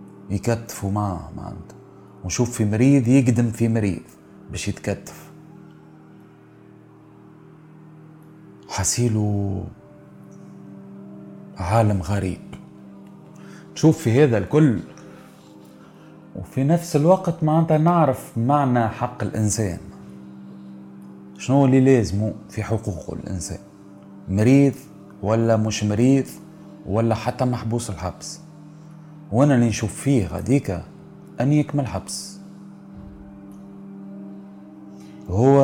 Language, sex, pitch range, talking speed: French, male, 100-140 Hz, 85 wpm